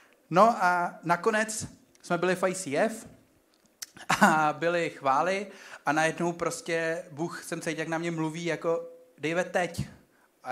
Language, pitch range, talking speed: Czech, 150-180 Hz, 135 wpm